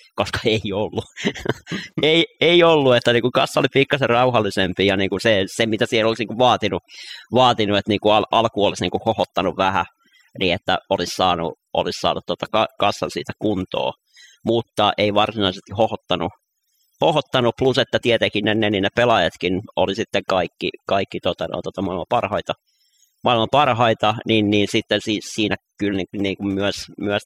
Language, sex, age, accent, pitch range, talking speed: Finnish, male, 30-49, native, 100-120 Hz, 175 wpm